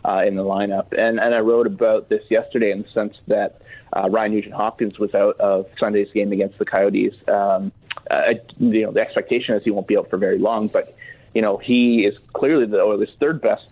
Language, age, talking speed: English, 30-49, 230 wpm